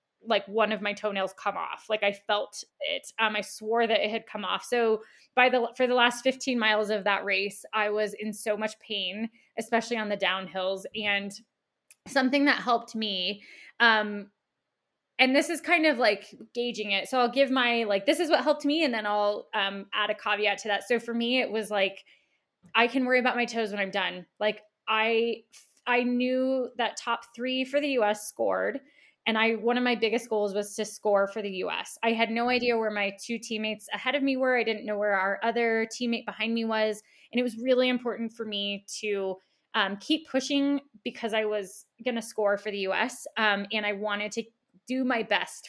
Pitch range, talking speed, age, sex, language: 210-250 Hz, 215 wpm, 20-39, female, English